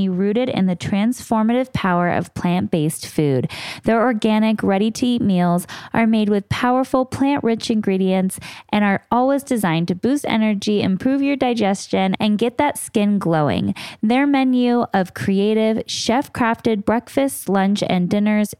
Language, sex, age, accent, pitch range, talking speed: English, female, 10-29, American, 180-235 Hz, 135 wpm